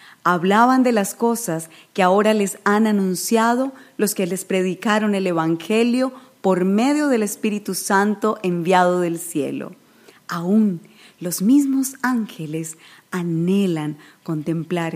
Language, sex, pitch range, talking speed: Spanish, female, 165-225 Hz, 115 wpm